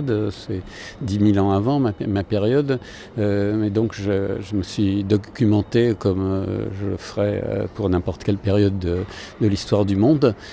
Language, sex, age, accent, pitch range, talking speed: French, male, 50-69, French, 95-110 Hz, 180 wpm